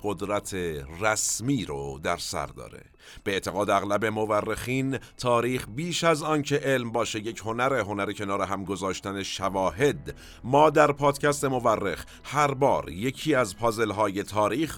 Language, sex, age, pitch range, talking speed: Persian, male, 50-69, 100-140 Hz, 140 wpm